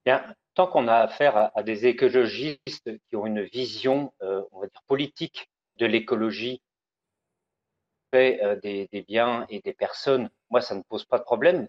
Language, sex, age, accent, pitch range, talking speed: French, male, 40-59, French, 105-175 Hz, 180 wpm